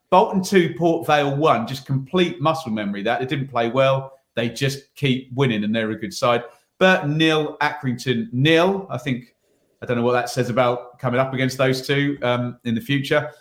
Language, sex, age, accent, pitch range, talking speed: English, male, 30-49, British, 120-150 Hz, 200 wpm